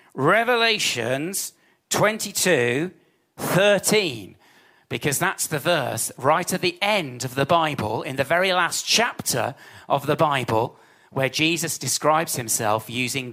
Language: English